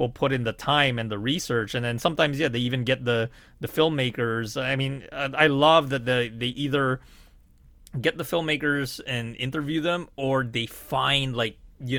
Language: English